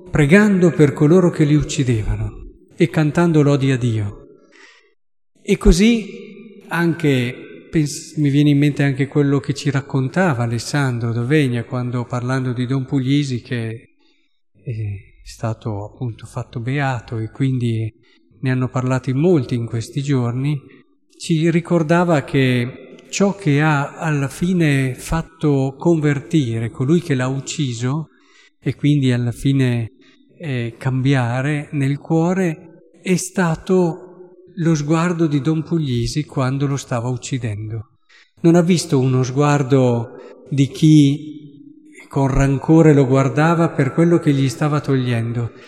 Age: 50-69